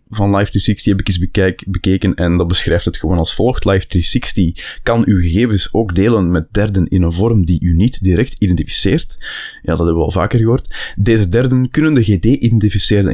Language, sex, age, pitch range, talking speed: Dutch, male, 20-39, 90-110 Hz, 185 wpm